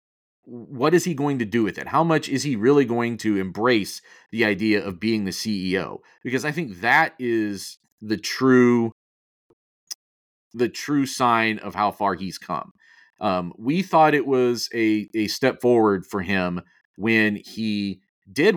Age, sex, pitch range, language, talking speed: 40-59, male, 105-140 Hz, English, 165 wpm